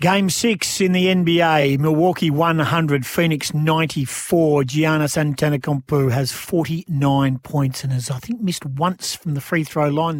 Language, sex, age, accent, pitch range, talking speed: English, male, 40-59, Australian, 140-175 Hz, 145 wpm